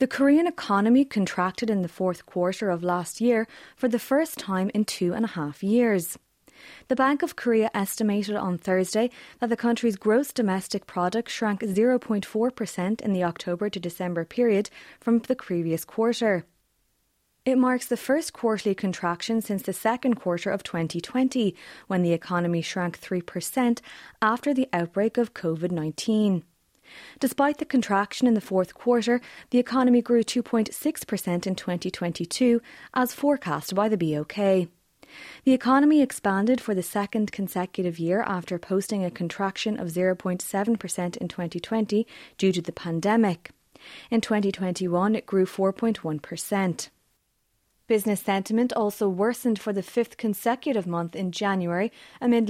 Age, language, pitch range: 20-39, English, 180-235 Hz